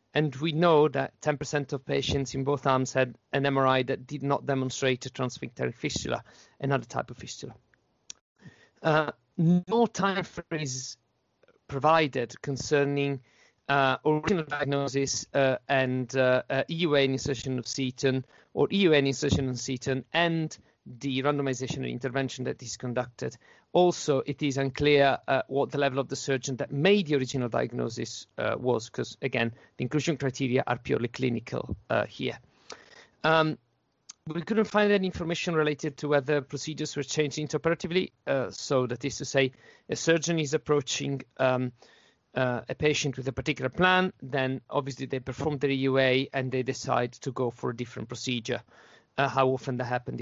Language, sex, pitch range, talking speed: English, male, 130-150 Hz, 160 wpm